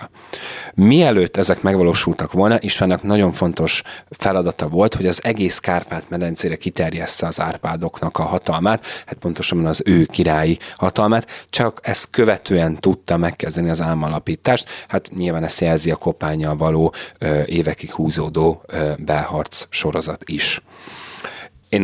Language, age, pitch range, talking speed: Hungarian, 30-49, 80-95 Hz, 120 wpm